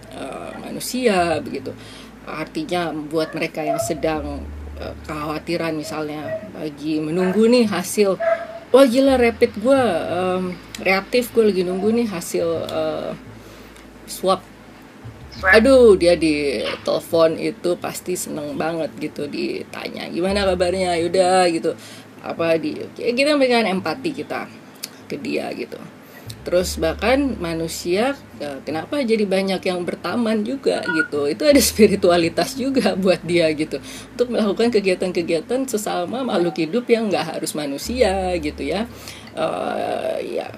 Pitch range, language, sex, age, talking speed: 160-230 Hz, English, female, 30-49, 125 wpm